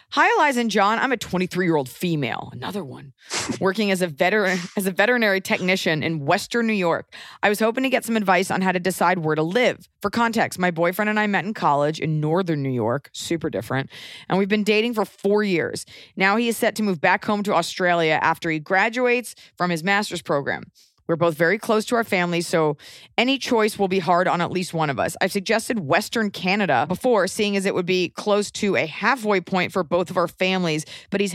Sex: female